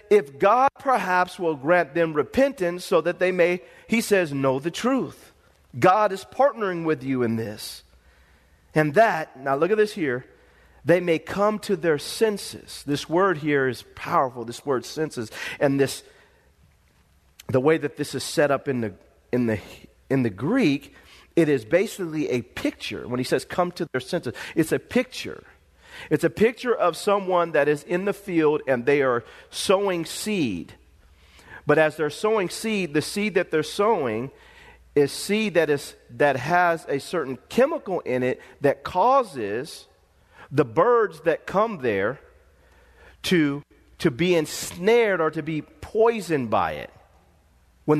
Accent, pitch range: American, 135-195 Hz